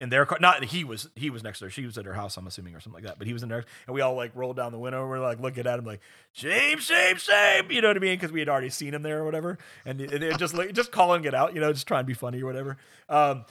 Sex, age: male, 30-49